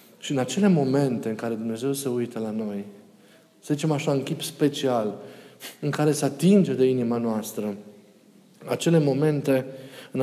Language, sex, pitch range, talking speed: Romanian, male, 120-155 Hz, 160 wpm